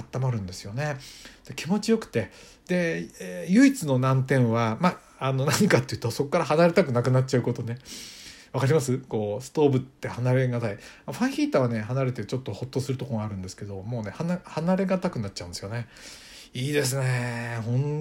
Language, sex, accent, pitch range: Japanese, male, native, 115-145 Hz